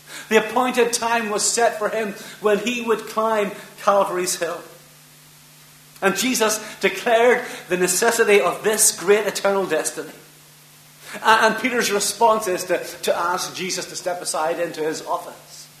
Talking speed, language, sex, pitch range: 140 wpm, English, male, 160-215 Hz